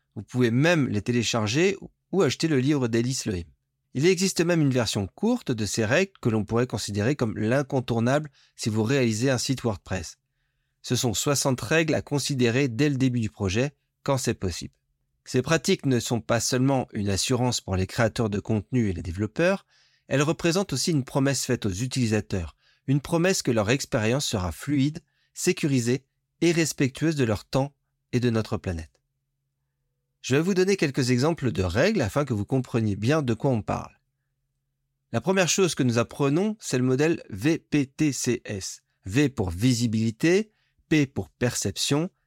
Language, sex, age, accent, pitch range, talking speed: French, male, 30-49, French, 115-145 Hz, 170 wpm